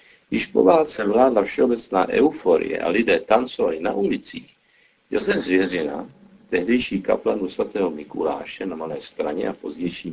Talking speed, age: 130 wpm, 60-79